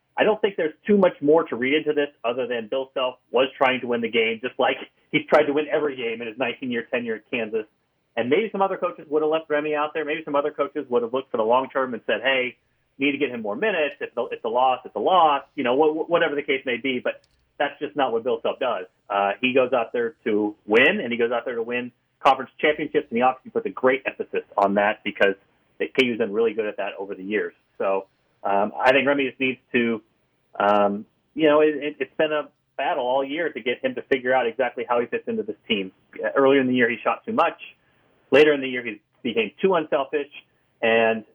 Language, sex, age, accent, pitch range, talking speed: English, male, 30-49, American, 120-155 Hz, 245 wpm